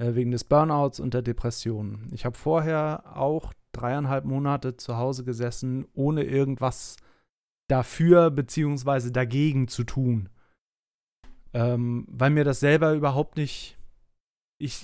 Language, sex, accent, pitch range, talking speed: German, male, German, 125-150 Hz, 120 wpm